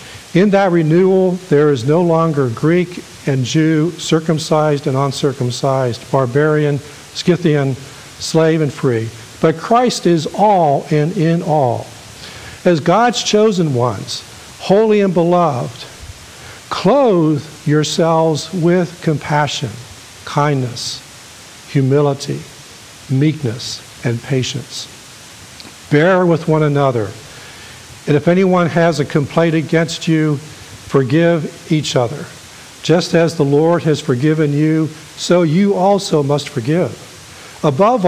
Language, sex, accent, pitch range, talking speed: English, male, American, 135-175 Hz, 110 wpm